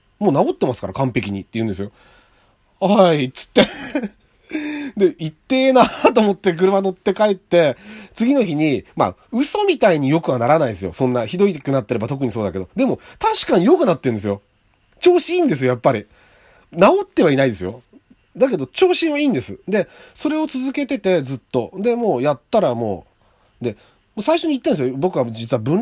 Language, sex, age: Japanese, male, 40-59